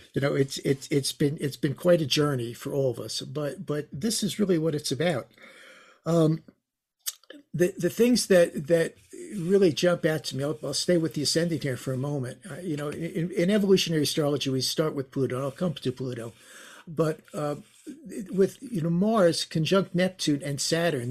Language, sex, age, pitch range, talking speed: English, male, 60-79, 140-180 Hz, 195 wpm